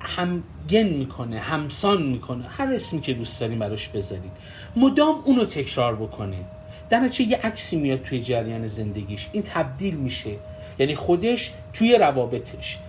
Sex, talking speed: male, 145 wpm